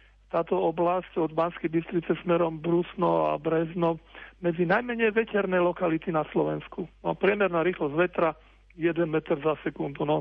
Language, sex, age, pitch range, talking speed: Slovak, male, 40-59, 165-180 Hz, 140 wpm